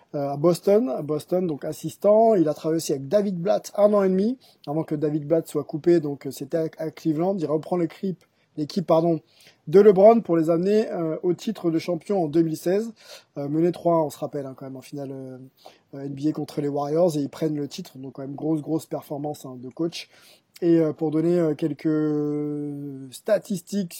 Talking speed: 205 wpm